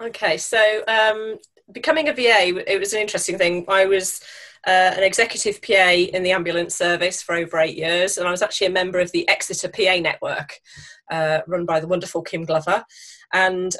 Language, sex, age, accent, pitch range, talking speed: English, female, 30-49, British, 175-205 Hz, 190 wpm